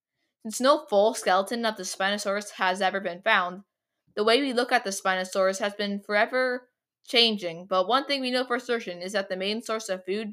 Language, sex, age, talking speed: English, female, 10-29, 210 wpm